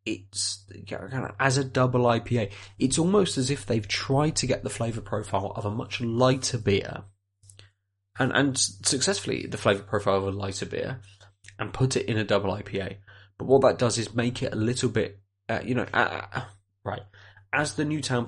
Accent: British